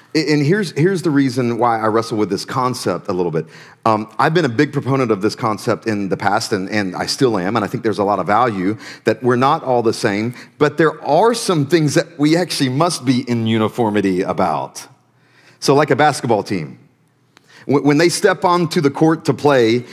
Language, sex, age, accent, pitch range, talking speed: English, male, 40-59, American, 125-160 Hz, 215 wpm